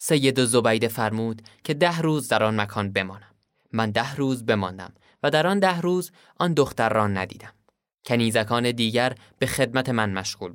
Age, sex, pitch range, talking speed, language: 20-39, male, 105-145 Hz, 165 wpm, Persian